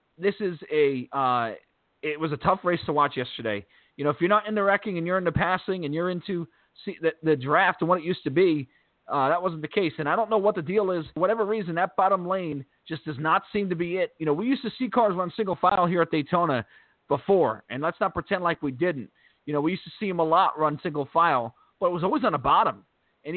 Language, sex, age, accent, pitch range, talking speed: English, male, 40-59, American, 150-195 Hz, 270 wpm